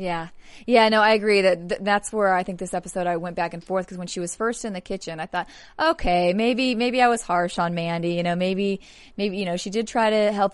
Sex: female